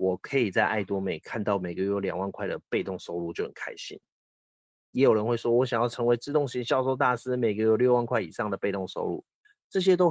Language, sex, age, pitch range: Chinese, male, 30-49, 100-125 Hz